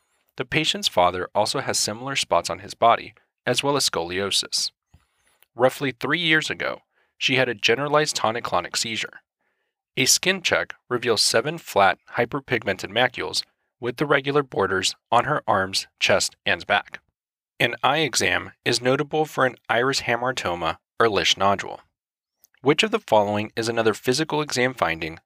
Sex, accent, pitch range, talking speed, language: male, American, 110-150 Hz, 150 wpm, English